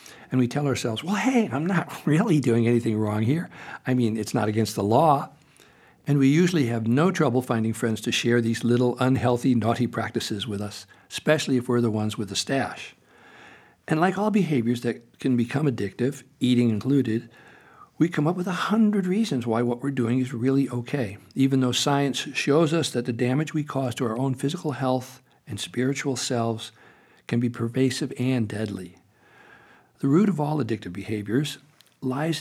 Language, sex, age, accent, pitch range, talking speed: English, male, 60-79, American, 115-150 Hz, 185 wpm